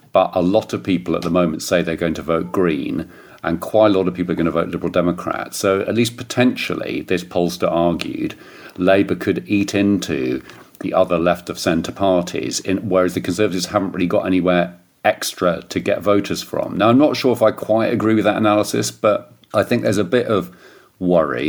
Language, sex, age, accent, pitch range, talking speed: English, male, 40-59, British, 90-105 Hz, 205 wpm